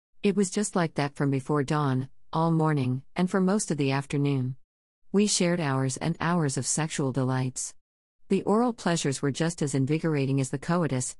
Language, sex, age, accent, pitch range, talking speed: English, female, 50-69, American, 130-175 Hz, 180 wpm